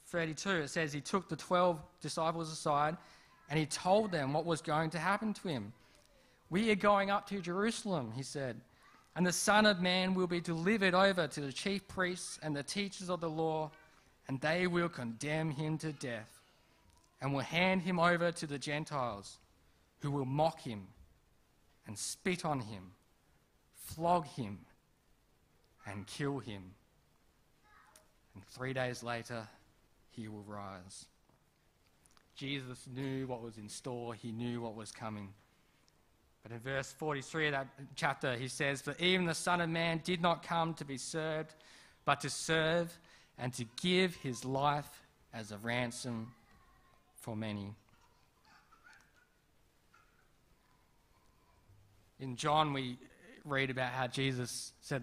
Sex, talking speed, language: male, 145 wpm, English